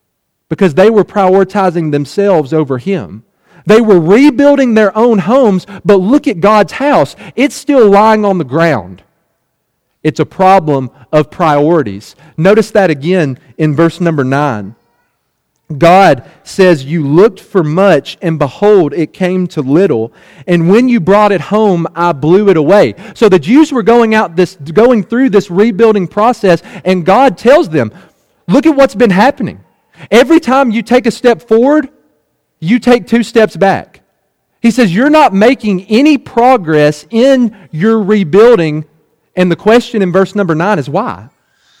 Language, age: English, 40-59